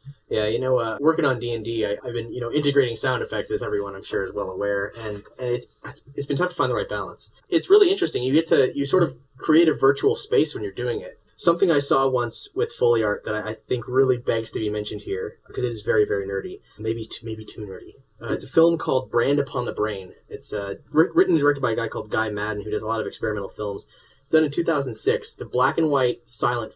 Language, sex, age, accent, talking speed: English, male, 20-39, American, 260 wpm